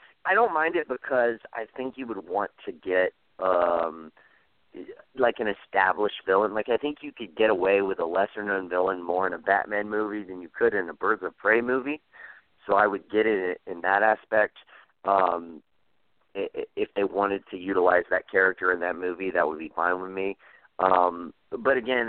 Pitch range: 95-130 Hz